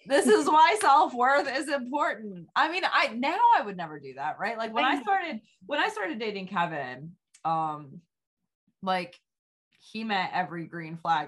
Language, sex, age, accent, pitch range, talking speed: English, female, 20-39, American, 165-225 Hz, 170 wpm